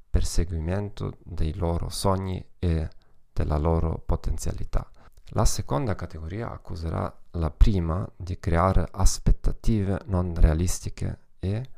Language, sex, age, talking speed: Italian, male, 40-59, 100 wpm